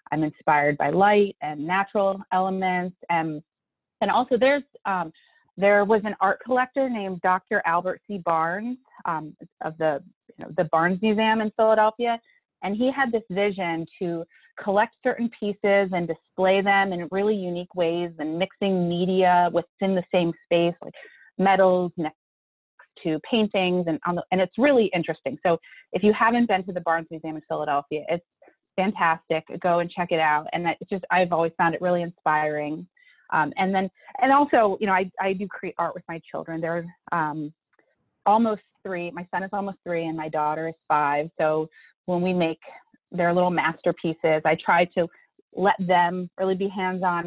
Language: English